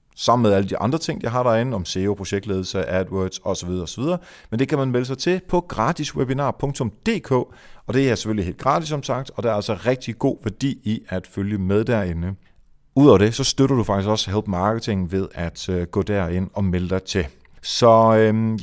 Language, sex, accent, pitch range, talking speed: Danish, male, native, 100-130 Hz, 205 wpm